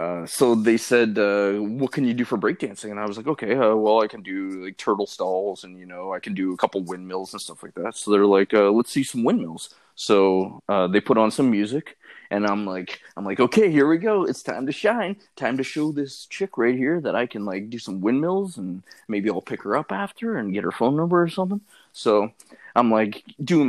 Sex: male